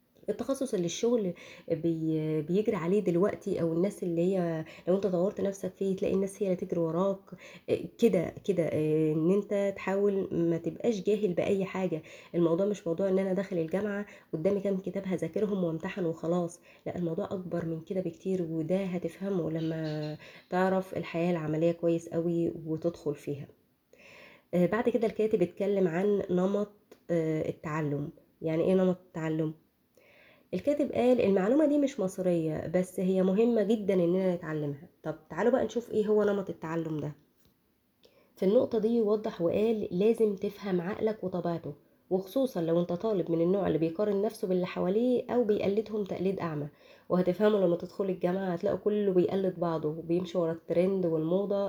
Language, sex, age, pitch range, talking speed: Arabic, female, 20-39, 170-205 Hz, 150 wpm